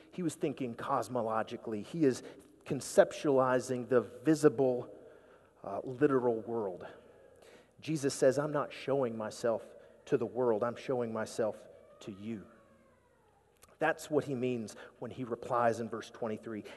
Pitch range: 120-155 Hz